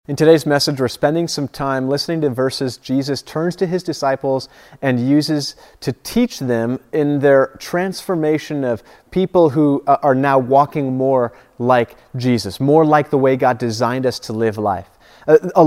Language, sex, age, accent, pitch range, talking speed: English, male, 30-49, American, 135-170 Hz, 165 wpm